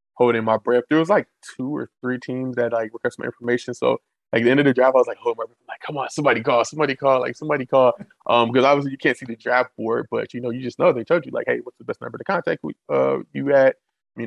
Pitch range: 115-135 Hz